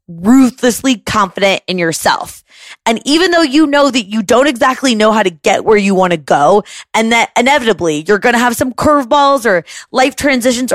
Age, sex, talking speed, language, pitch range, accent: 20-39, female, 190 wpm, English, 195-260 Hz, American